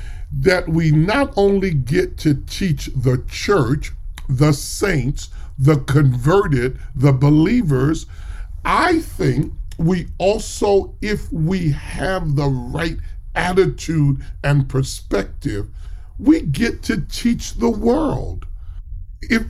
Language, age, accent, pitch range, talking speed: English, 40-59, American, 125-170 Hz, 105 wpm